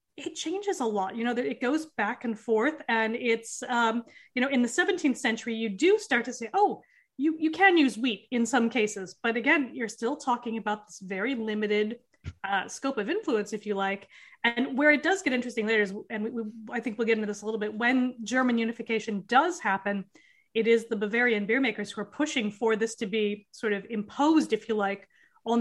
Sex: female